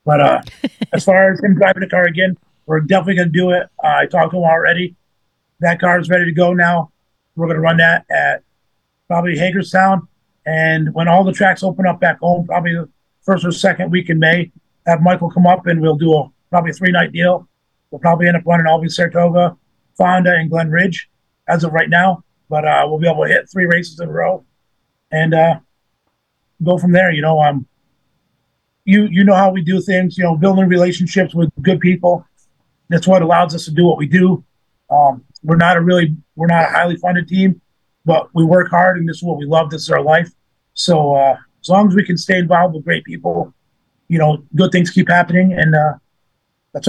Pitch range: 160-180 Hz